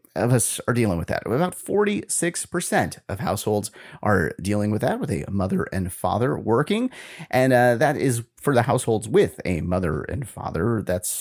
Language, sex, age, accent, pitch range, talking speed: English, male, 30-49, American, 100-160 Hz, 175 wpm